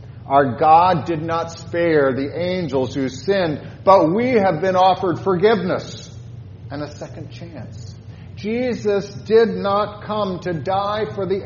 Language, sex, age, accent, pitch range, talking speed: English, male, 40-59, American, 115-150 Hz, 140 wpm